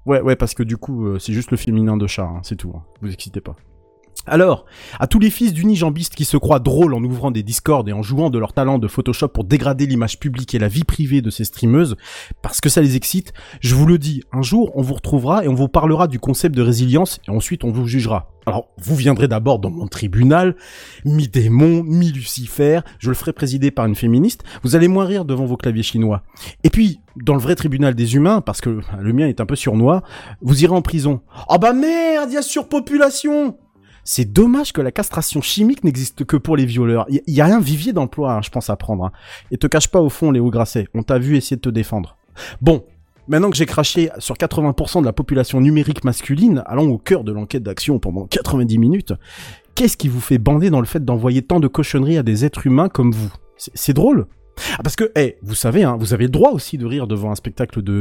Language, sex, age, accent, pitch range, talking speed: French, male, 30-49, French, 115-155 Hz, 240 wpm